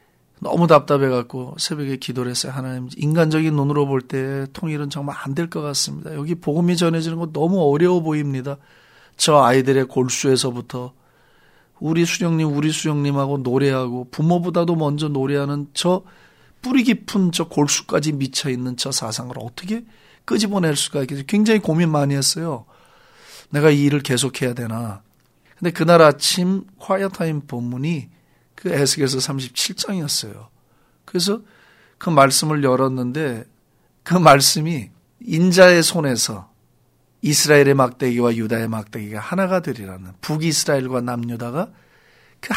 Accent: native